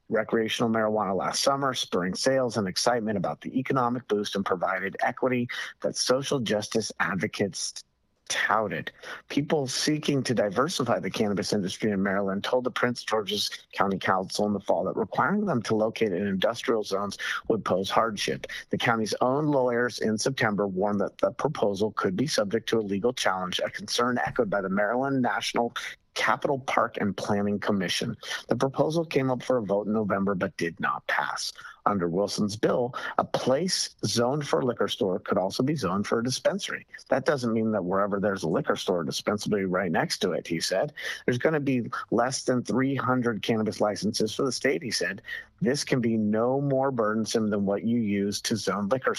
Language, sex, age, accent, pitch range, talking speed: English, male, 50-69, American, 105-130 Hz, 185 wpm